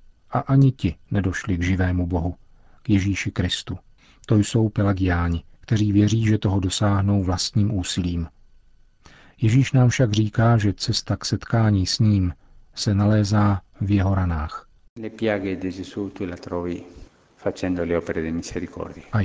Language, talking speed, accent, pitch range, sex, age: Czech, 110 wpm, native, 95-115 Hz, male, 40-59